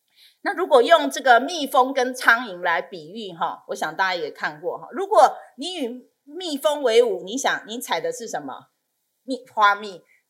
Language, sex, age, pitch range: Chinese, female, 30-49, 195-320 Hz